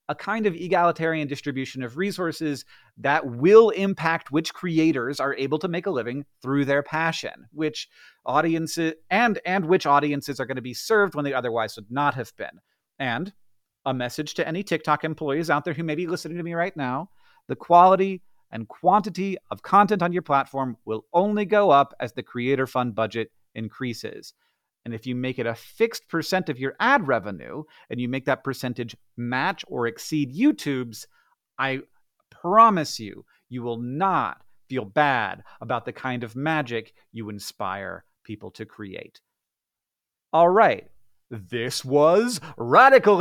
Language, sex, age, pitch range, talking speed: English, male, 30-49, 125-185 Hz, 165 wpm